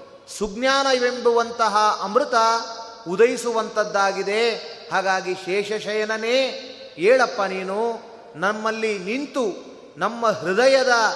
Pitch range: 195-245 Hz